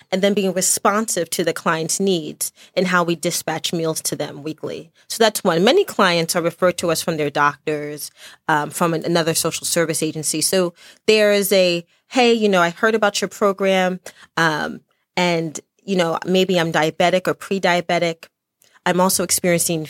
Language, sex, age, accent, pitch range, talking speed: English, female, 30-49, American, 160-195 Hz, 180 wpm